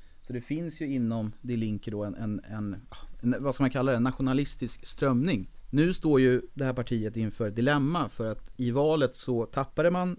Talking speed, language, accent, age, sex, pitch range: 200 wpm, Swedish, native, 30-49, male, 110-140 Hz